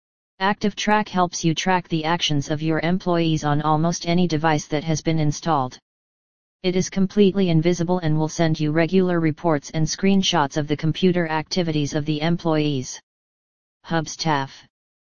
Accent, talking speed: American, 150 wpm